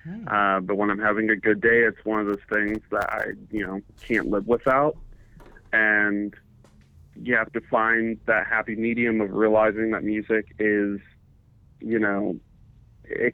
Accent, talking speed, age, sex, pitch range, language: American, 160 wpm, 30-49, male, 100-120 Hz, English